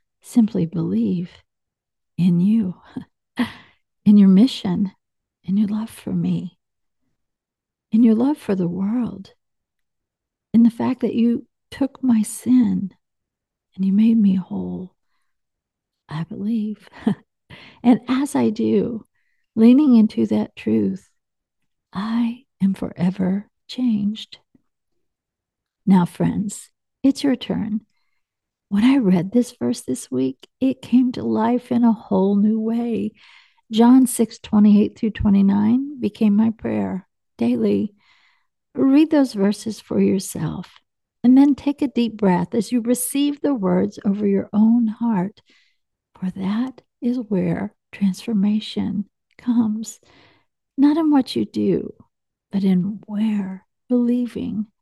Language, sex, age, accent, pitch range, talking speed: English, female, 50-69, American, 190-240 Hz, 120 wpm